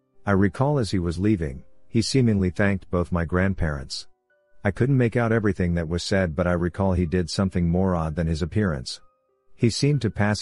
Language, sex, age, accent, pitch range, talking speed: English, male, 50-69, American, 85-100 Hz, 200 wpm